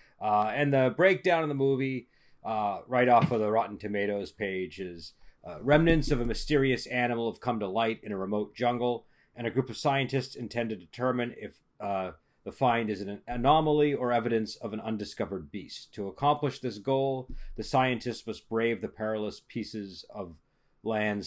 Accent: American